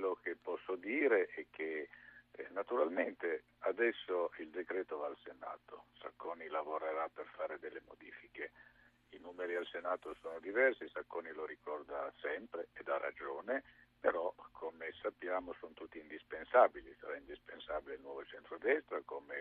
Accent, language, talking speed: native, Italian, 140 wpm